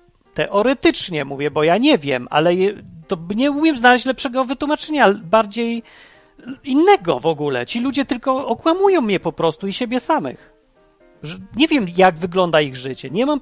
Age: 40-59